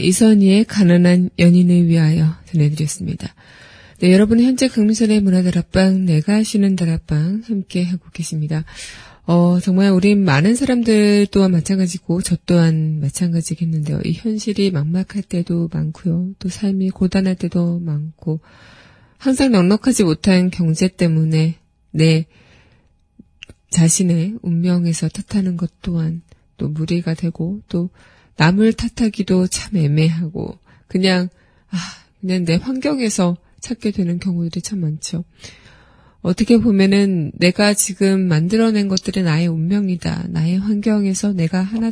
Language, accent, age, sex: Korean, native, 20-39, female